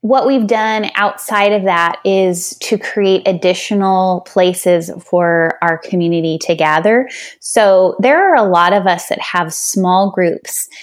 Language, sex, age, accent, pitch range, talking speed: English, female, 20-39, American, 175-210 Hz, 150 wpm